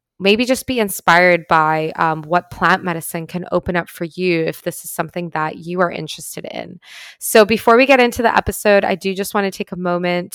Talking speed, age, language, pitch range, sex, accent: 220 wpm, 20-39, English, 175-205 Hz, female, American